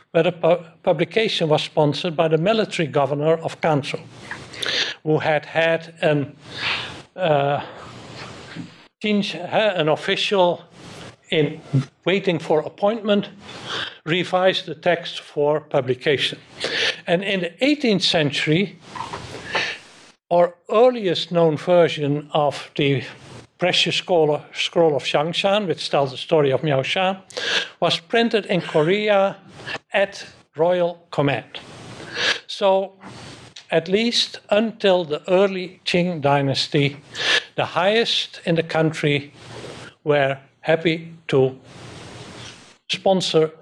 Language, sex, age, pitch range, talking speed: English, male, 60-79, 145-185 Hz, 100 wpm